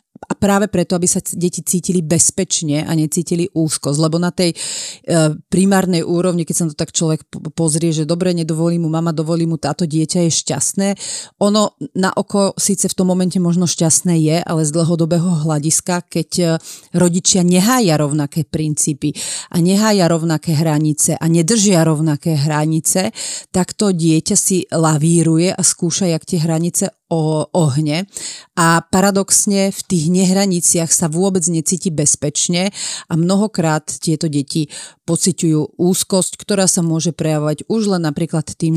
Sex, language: female, Slovak